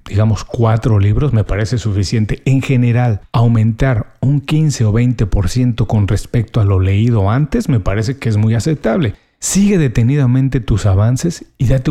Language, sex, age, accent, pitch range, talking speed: Spanish, male, 40-59, Mexican, 110-140 Hz, 155 wpm